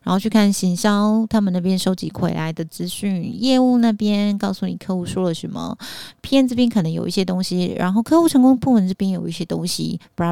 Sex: female